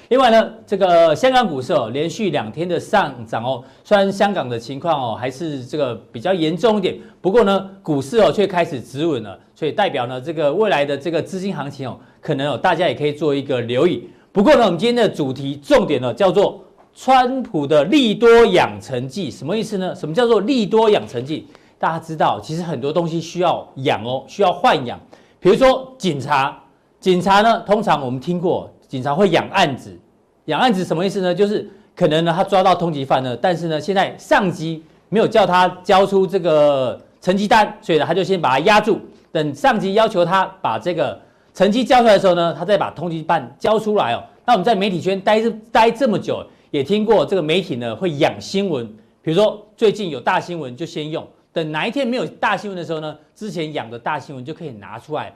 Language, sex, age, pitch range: Chinese, male, 40-59, 150-210 Hz